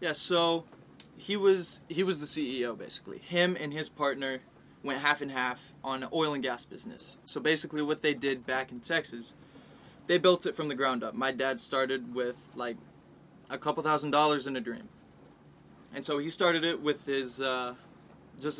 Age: 20-39